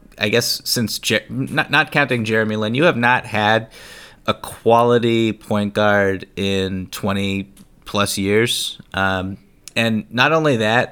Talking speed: 145 wpm